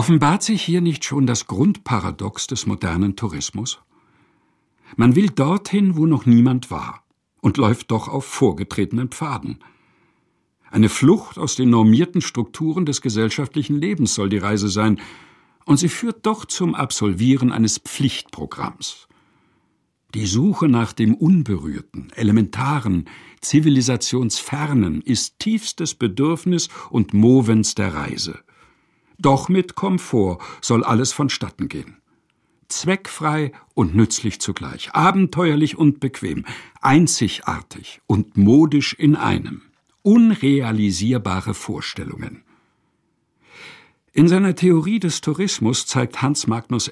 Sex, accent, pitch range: male, German, 110-155 Hz